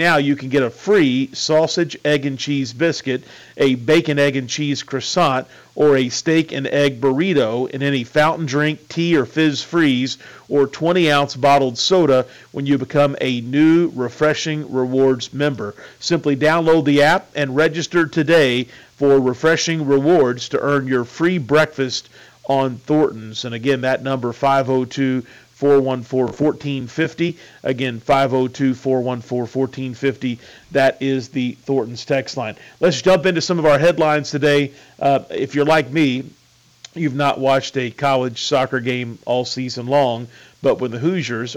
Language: English